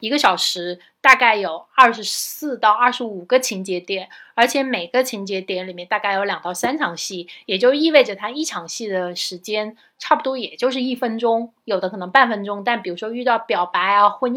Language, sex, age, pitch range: Chinese, female, 20-39, 190-240 Hz